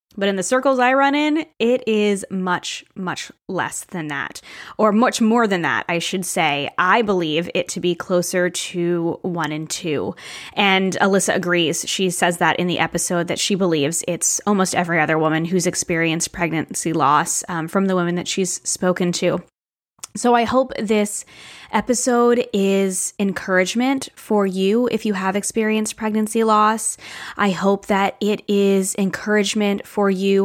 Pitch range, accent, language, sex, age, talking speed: 180-215 Hz, American, English, female, 20-39, 165 wpm